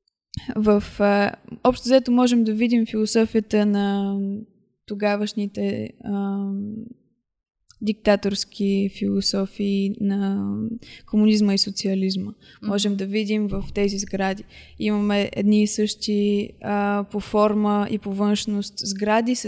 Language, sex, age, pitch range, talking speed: Bulgarian, female, 20-39, 195-220 Hz, 95 wpm